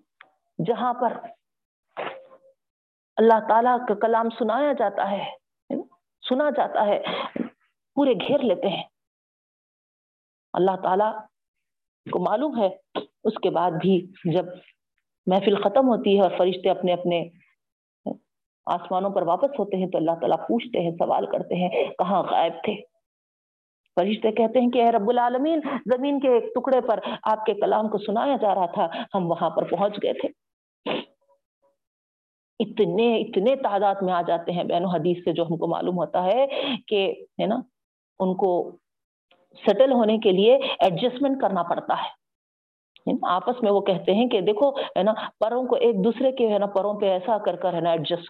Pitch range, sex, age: 180-235 Hz, female, 50-69